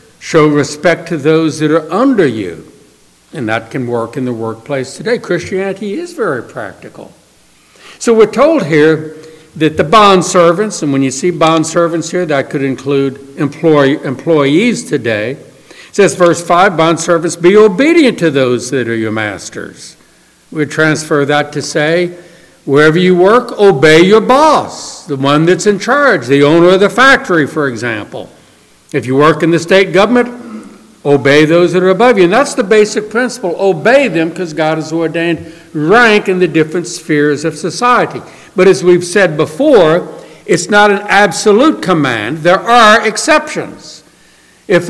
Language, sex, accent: English, male, American